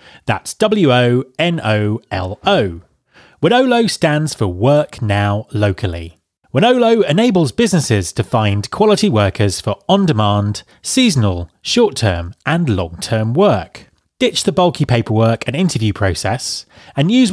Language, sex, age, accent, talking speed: English, male, 30-49, British, 105 wpm